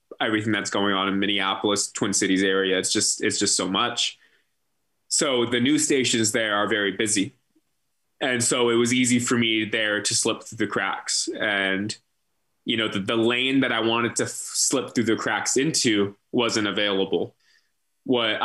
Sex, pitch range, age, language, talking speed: male, 100-120 Hz, 20-39, English, 180 wpm